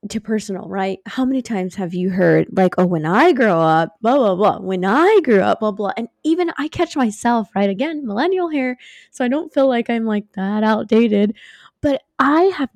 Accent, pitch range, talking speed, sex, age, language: American, 190-265 Hz, 210 wpm, female, 20-39, English